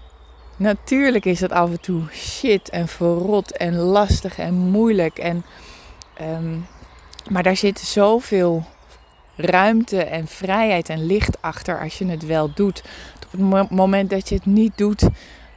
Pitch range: 160-195 Hz